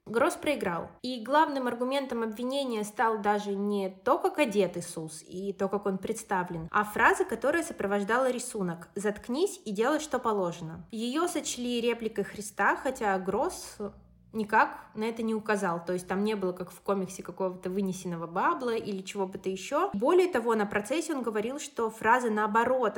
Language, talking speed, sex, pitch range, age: Russian, 165 wpm, female, 200-255 Hz, 20-39